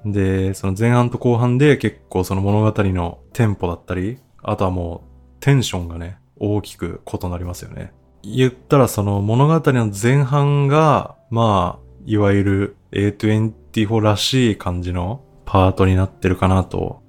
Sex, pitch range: male, 95-120 Hz